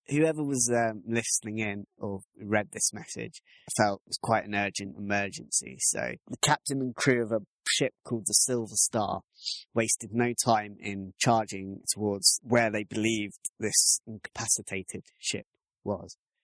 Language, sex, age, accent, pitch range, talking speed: English, male, 20-39, British, 100-115 Hz, 150 wpm